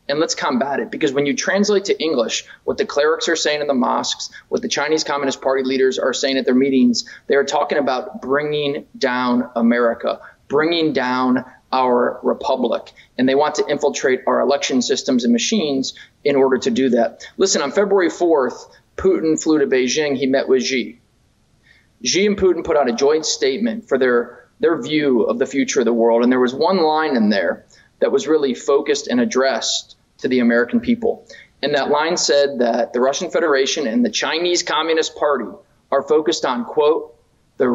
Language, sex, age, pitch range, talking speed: English, male, 30-49, 130-180 Hz, 190 wpm